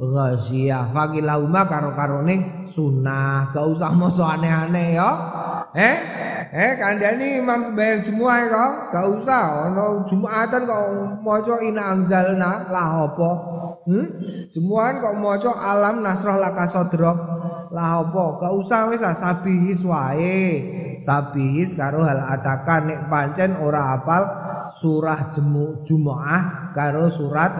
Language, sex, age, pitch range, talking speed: Indonesian, male, 20-39, 145-190 Hz, 115 wpm